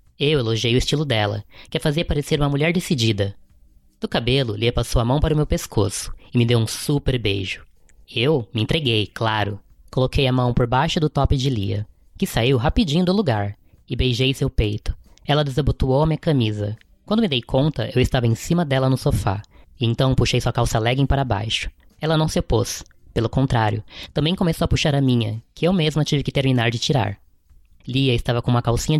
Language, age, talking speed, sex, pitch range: Portuguese, 10-29, 205 wpm, female, 110-145 Hz